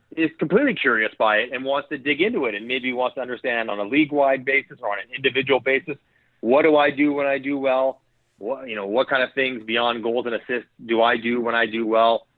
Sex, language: male, English